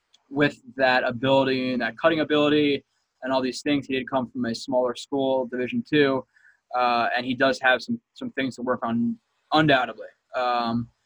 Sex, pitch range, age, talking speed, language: male, 125-150 Hz, 20-39, 180 wpm, English